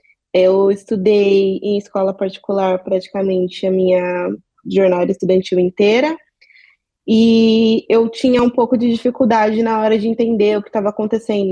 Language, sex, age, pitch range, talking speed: Portuguese, female, 20-39, 195-225 Hz, 135 wpm